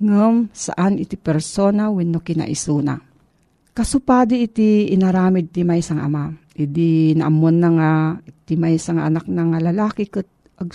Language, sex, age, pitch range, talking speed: Filipino, female, 40-59, 165-210 Hz, 155 wpm